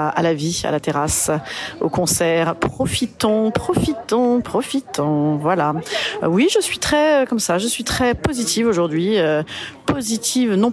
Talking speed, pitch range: 140 wpm, 170-235 Hz